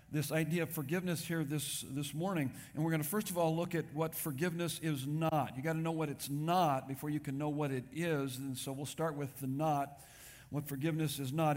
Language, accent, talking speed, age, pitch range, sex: English, American, 230 wpm, 50-69, 140-175 Hz, male